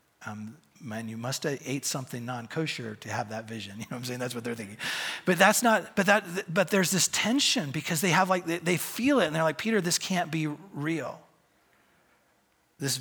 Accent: American